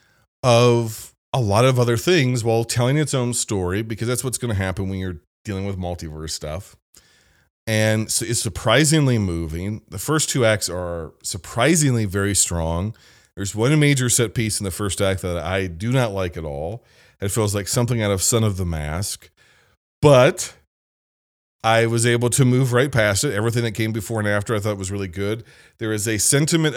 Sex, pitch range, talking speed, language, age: male, 95-120 Hz, 190 wpm, English, 30-49